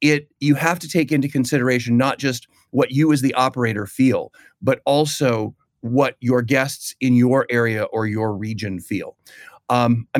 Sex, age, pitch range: male, 40-59, 115-135 Hz